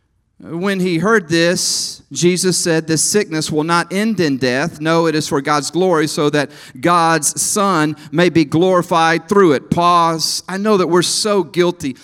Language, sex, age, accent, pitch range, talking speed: English, male, 40-59, American, 155-230 Hz, 175 wpm